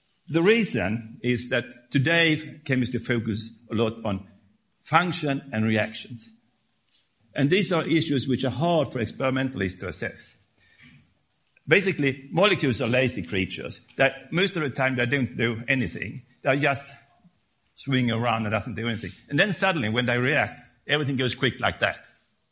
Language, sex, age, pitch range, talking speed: English, male, 60-79, 115-150 Hz, 150 wpm